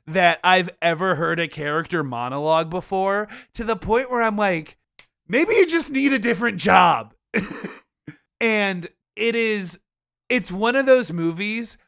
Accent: American